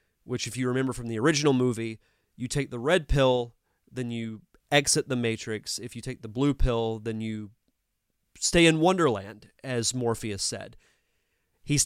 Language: English